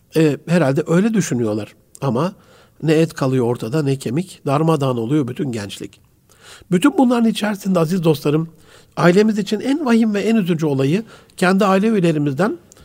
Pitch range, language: 135-185 Hz, Turkish